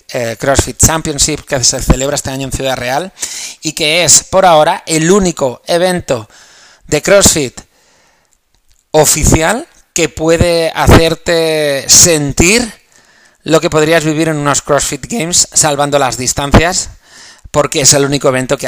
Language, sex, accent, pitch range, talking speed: Spanish, male, Spanish, 130-160 Hz, 140 wpm